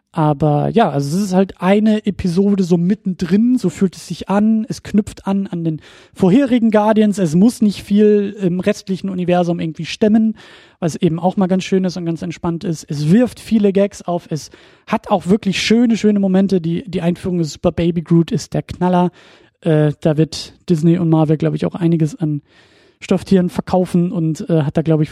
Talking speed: 200 wpm